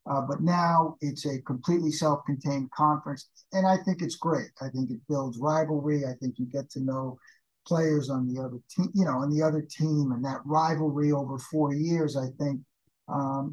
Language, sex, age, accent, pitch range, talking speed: English, male, 50-69, American, 135-160 Hz, 195 wpm